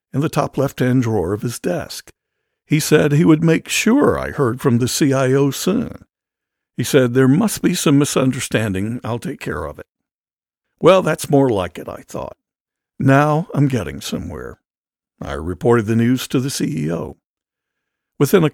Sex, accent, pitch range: male, American, 120-150 Hz